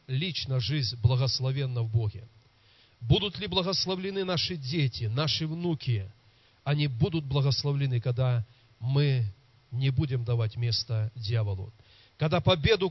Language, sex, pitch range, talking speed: Russian, male, 115-150 Hz, 110 wpm